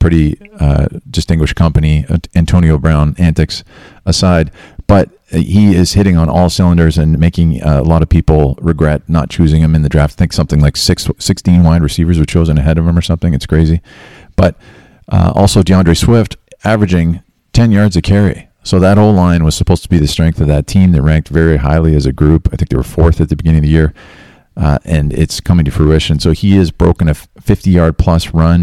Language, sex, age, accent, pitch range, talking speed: English, male, 40-59, American, 75-90 Hz, 200 wpm